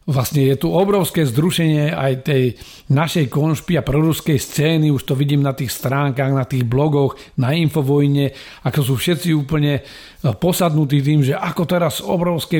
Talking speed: 155 wpm